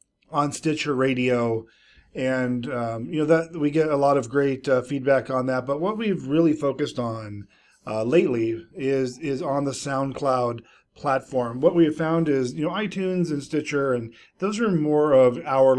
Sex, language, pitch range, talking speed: male, English, 125-150 Hz, 180 wpm